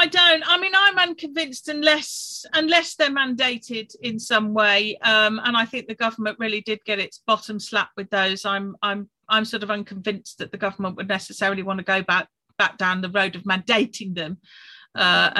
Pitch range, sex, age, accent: 185-225 Hz, female, 40-59, British